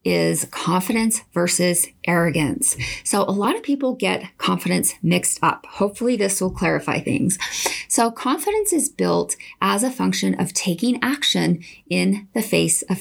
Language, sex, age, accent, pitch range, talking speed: English, female, 30-49, American, 180-225 Hz, 150 wpm